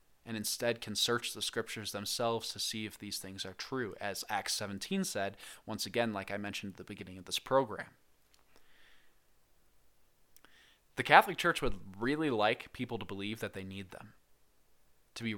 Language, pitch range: English, 100-125 Hz